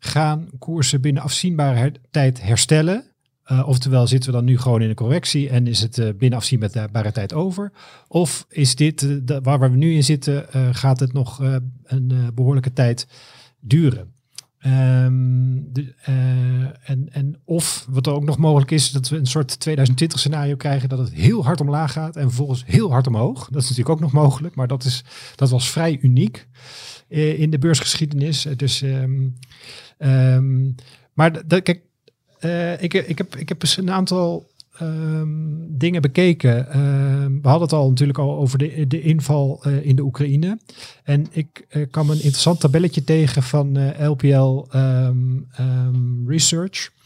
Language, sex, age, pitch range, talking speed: Dutch, male, 50-69, 130-155 Hz, 170 wpm